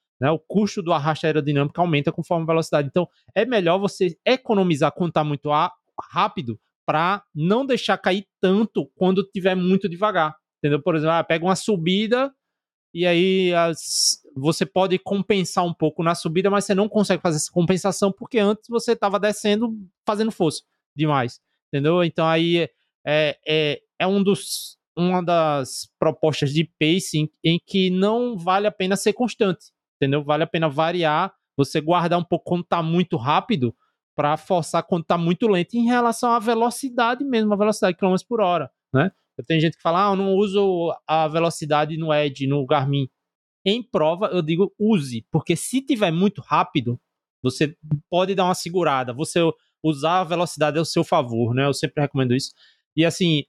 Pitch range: 155-200 Hz